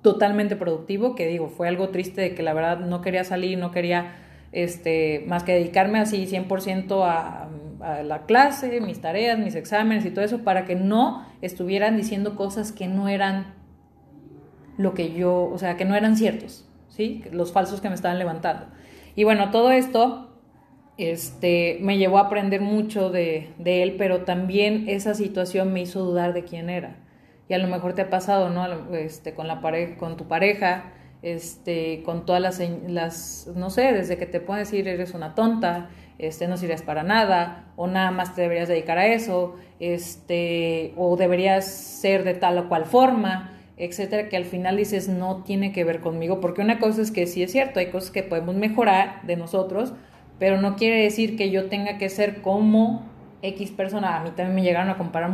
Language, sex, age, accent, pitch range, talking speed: Spanish, female, 30-49, Mexican, 175-205 Hz, 190 wpm